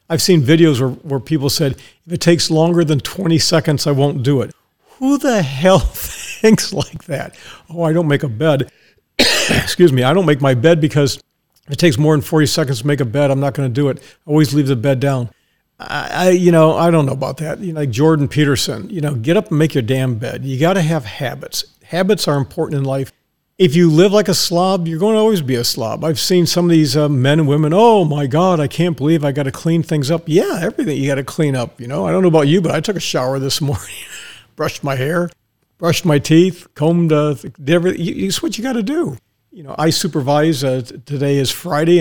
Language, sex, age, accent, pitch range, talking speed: English, male, 50-69, American, 140-170 Hz, 245 wpm